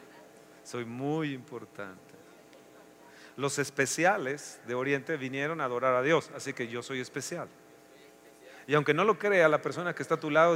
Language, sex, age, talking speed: Spanish, male, 40-59, 165 wpm